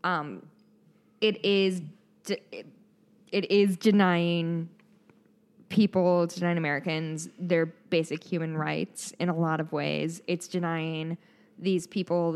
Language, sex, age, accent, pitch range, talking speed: English, female, 10-29, American, 170-210 Hz, 105 wpm